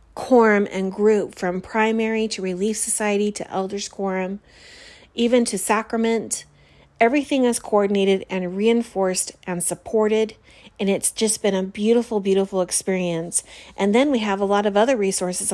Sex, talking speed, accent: female, 145 wpm, American